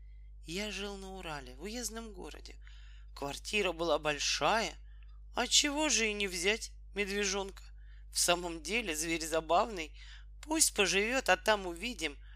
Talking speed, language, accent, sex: 130 wpm, Russian, native, male